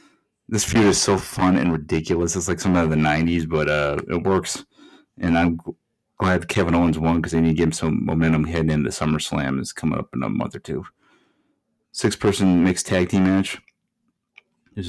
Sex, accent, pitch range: male, American, 80-95 Hz